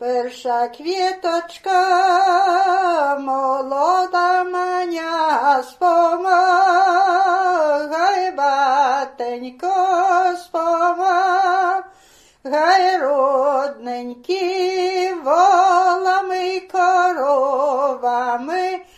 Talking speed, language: 35 wpm, Polish